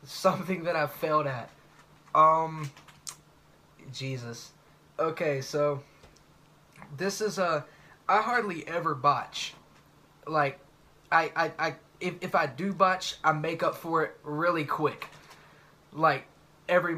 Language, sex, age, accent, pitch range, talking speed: English, male, 20-39, American, 150-185 Hz, 120 wpm